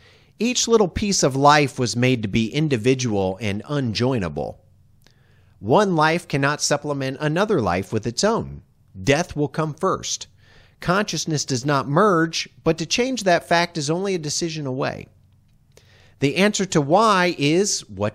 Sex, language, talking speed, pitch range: male, English, 150 wpm, 115-180 Hz